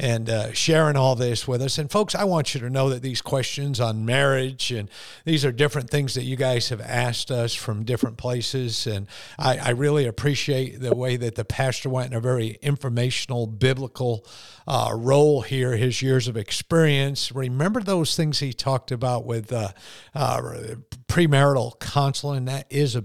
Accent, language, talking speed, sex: American, English, 180 wpm, male